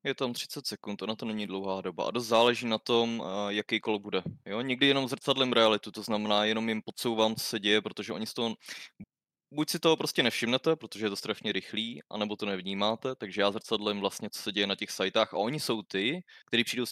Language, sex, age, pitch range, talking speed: Czech, male, 20-39, 100-115 Hz, 230 wpm